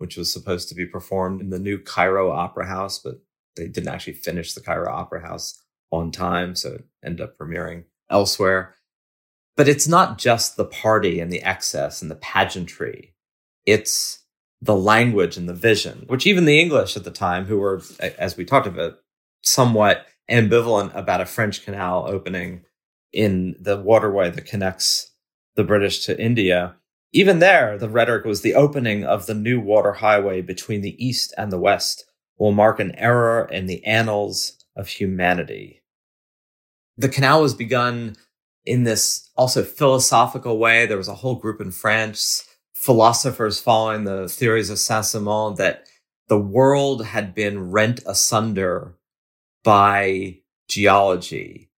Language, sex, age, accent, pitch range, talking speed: English, male, 30-49, American, 95-115 Hz, 155 wpm